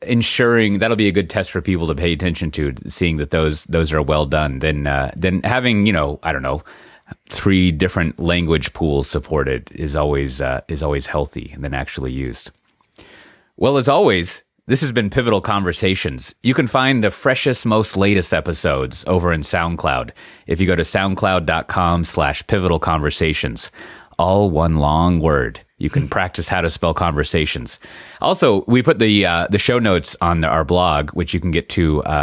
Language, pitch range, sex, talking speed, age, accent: English, 80-100 Hz, male, 185 wpm, 30-49, American